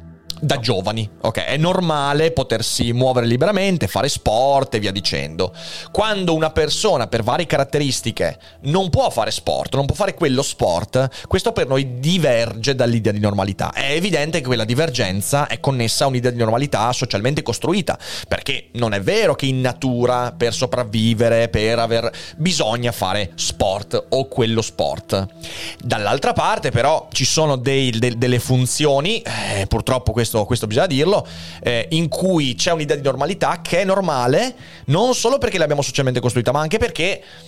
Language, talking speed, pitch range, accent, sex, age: Italian, 155 wpm, 115-150 Hz, native, male, 30-49